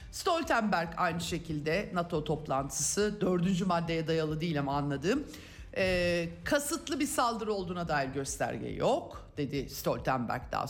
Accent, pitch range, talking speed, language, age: native, 160-210 Hz, 125 wpm, Turkish, 50-69